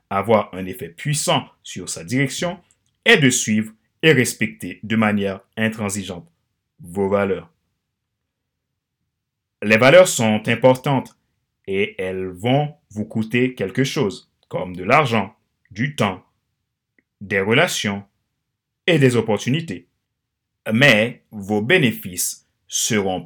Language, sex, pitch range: French, male, 100-125 Hz